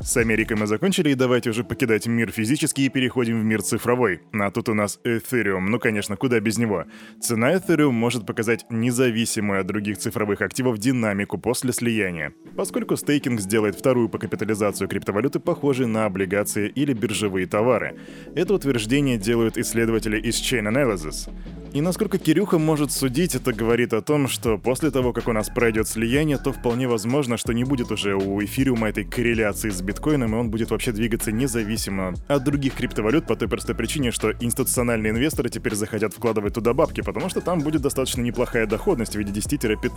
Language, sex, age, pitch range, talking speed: Russian, male, 20-39, 110-130 Hz, 175 wpm